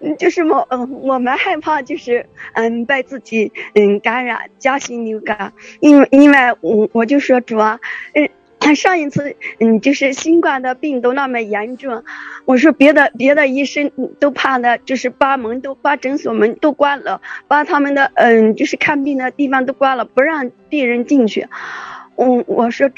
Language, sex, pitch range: English, female, 230-290 Hz